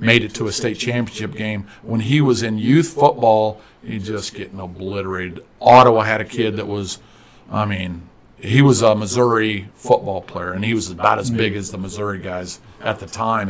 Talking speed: 195 wpm